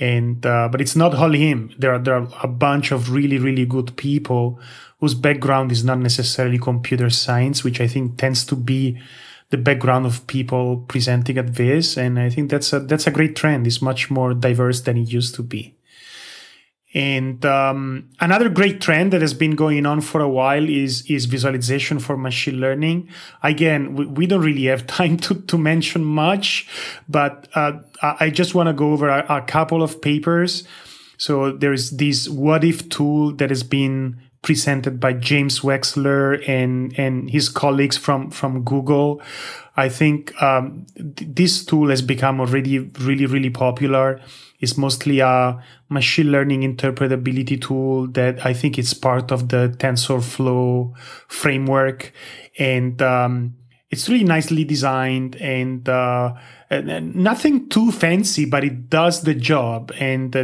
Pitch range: 130-150 Hz